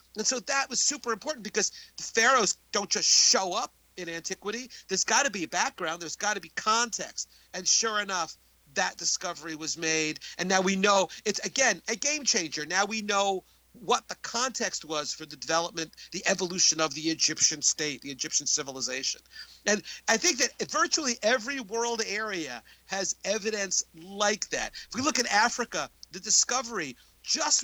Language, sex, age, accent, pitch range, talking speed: English, male, 40-59, American, 165-230 Hz, 175 wpm